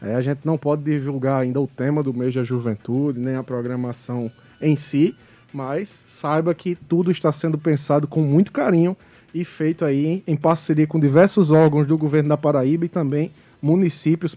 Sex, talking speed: male, 180 wpm